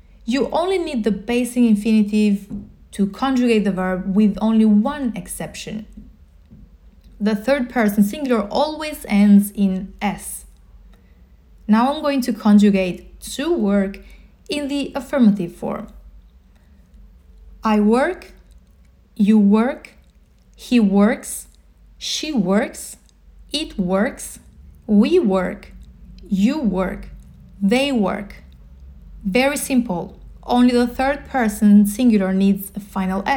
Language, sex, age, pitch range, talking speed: English, female, 30-49, 190-245 Hz, 105 wpm